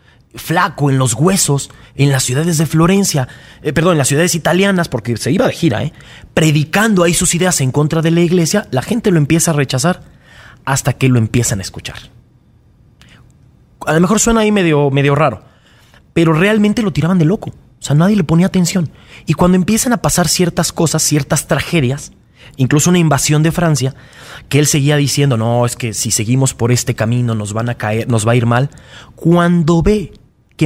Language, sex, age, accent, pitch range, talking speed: Spanish, male, 30-49, Mexican, 125-170 Hz, 190 wpm